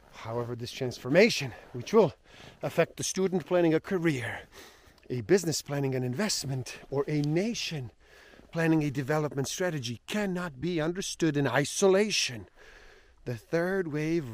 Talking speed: 125 wpm